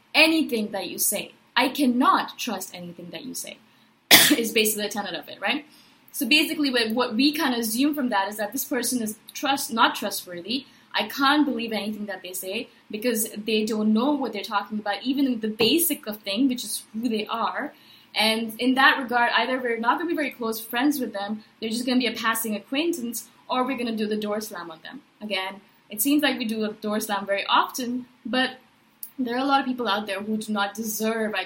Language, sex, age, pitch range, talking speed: English, female, 20-39, 215-285 Hz, 225 wpm